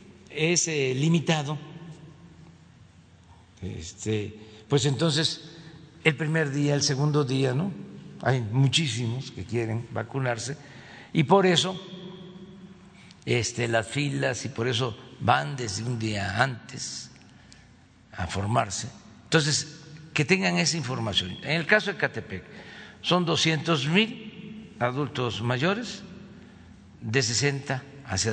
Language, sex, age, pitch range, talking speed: Spanish, male, 60-79, 115-170 Hz, 110 wpm